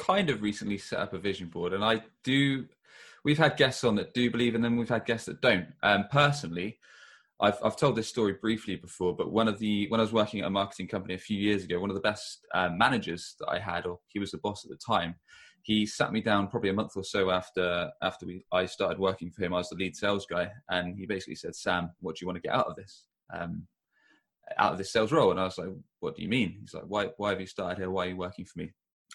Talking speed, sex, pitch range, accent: 275 wpm, male, 90-110 Hz, British